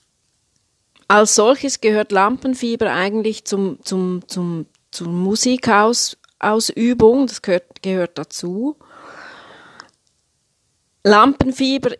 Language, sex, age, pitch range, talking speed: German, female, 30-49, 180-230 Hz, 60 wpm